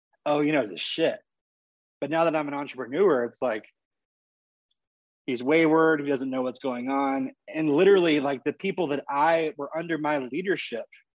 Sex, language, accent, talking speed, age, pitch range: male, English, American, 170 wpm, 20-39, 135-165 Hz